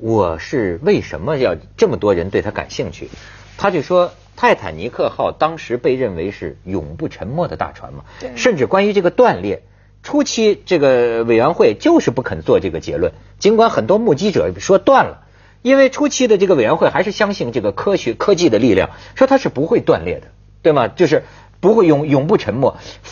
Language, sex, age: Chinese, male, 50-69